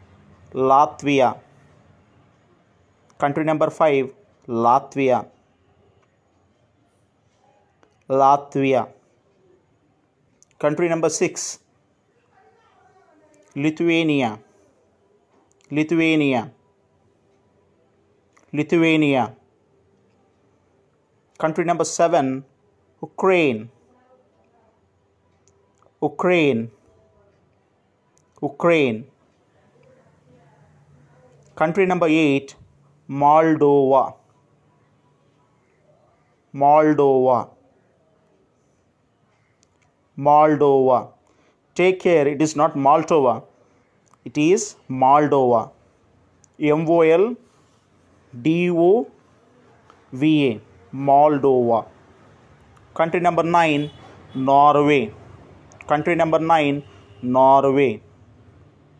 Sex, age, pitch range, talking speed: male, 30-49, 105-155 Hz, 45 wpm